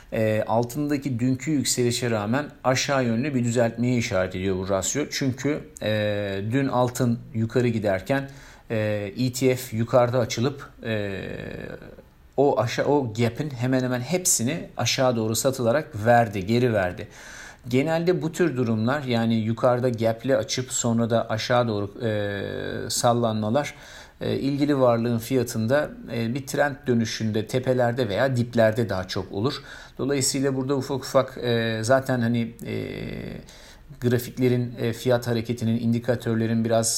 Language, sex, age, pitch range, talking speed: Turkish, male, 50-69, 115-130 Hz, 120 wpm